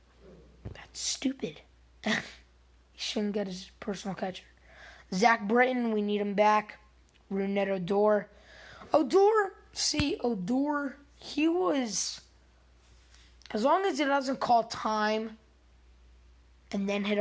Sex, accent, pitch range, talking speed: female, American, 175-220 Hz, 110 wpm